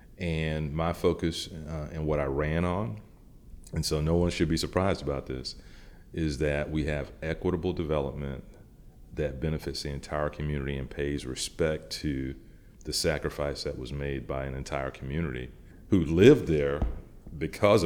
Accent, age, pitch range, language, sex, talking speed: American, 40-59, 70-80 Hz, English, male, 155 wpm